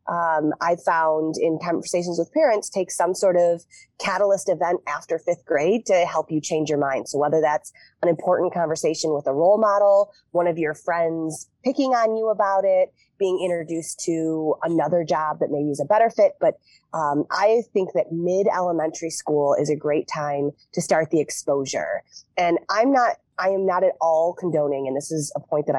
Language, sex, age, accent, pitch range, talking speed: English, female, 30-49, American, 150-190 Hz, 195 wpm